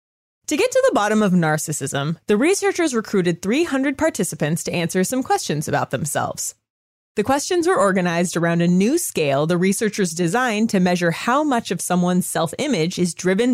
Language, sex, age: English, female, 20-39